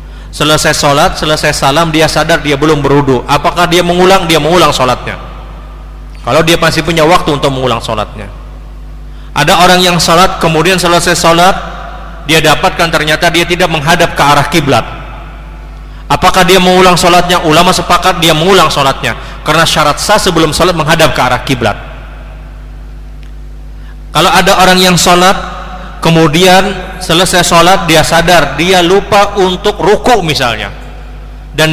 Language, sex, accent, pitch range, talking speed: Indonesian, male, native, 150-185 Hz, 140 wpm